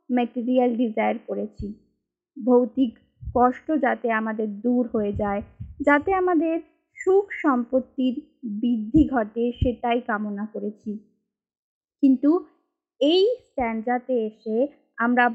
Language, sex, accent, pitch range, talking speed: Bengali, female, native, 225-290 Hz, 50 wpm